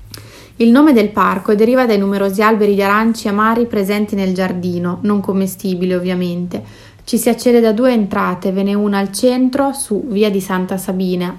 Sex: female